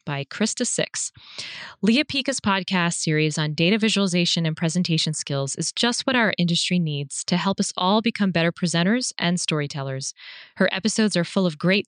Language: English